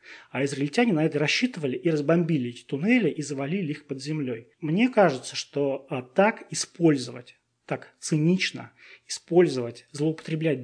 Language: Russian